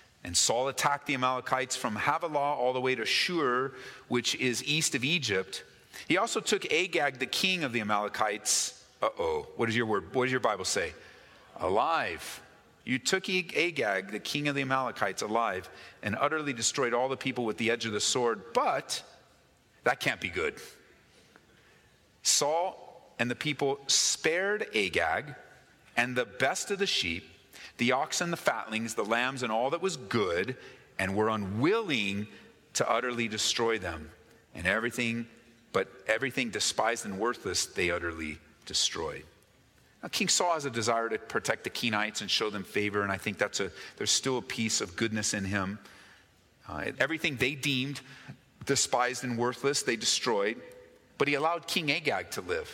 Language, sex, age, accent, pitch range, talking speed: English, male, 40-59, American, 110-145 Hz, 165 wpm